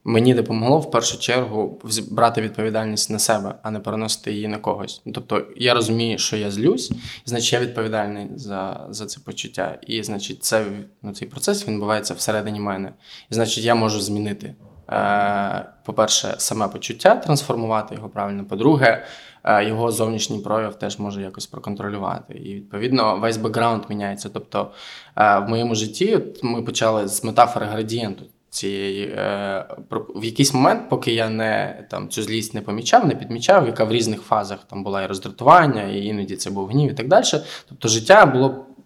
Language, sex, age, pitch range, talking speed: Ukrainian, male, 20-39, 105-120 Hz, 170 wpm